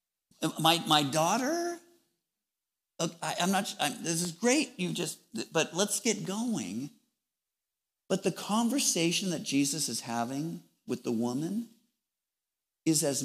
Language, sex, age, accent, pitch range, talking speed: English, male, 50-69, American, 115-195 Hz, 125 wpm